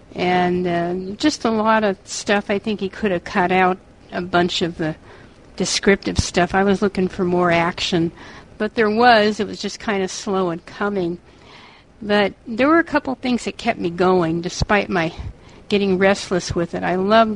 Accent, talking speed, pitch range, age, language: American, 190 wpm, 180-215 Hz, 60-79, English